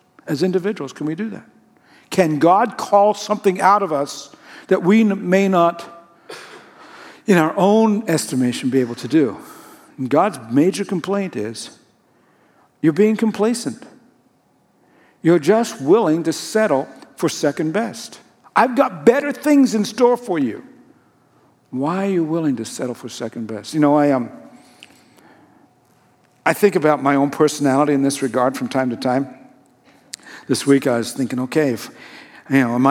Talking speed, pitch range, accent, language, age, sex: 155 wpm, 140-195 Hz, American, English, 60-79, male